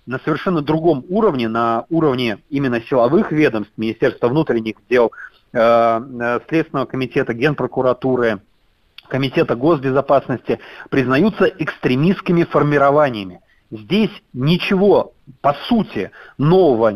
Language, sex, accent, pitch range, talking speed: Russian, male, native, 120-165 Hz, 90 wpm